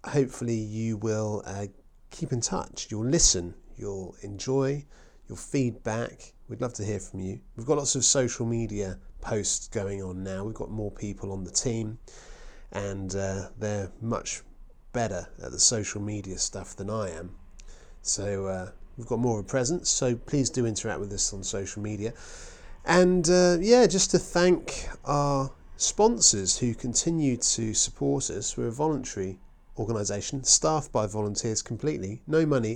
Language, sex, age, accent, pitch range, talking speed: English, male, 30-49, British, 100-135 Hz, 165 wpm